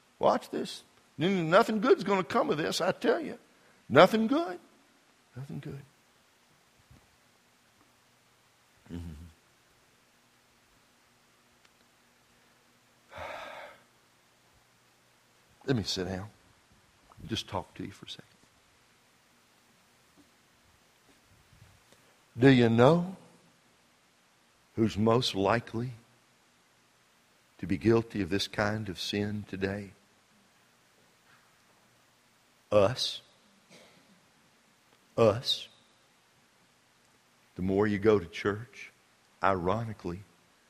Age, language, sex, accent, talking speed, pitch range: 60-79, English, male, American, 80 wpm, 85-115 Hz